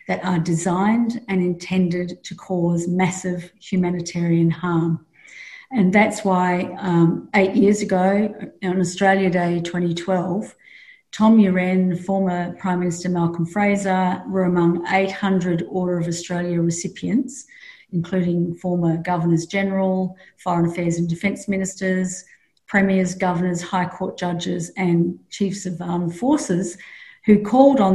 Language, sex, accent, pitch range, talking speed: English, female, Australian, 175-195 Hz, 120 wpm